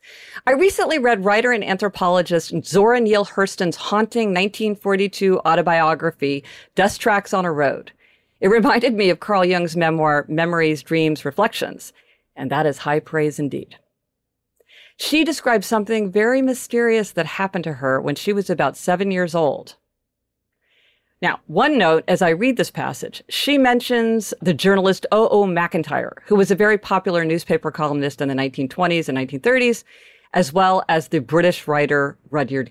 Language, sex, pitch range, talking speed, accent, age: English, female, 160-225 Hz, 150 wpm, American, 50-69